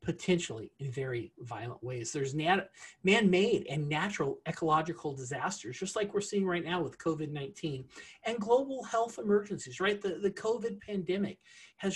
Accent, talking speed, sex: American, 145 wpm, male